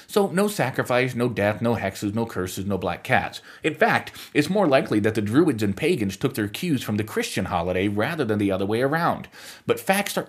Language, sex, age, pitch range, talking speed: English, male, 30-49, 105-150 Hz, 220 wpm